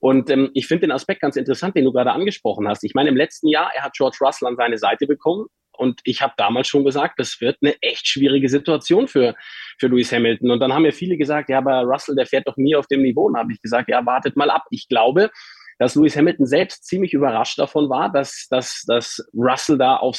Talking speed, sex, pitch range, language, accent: 245 wpm, male, 135-170 Hz, German, German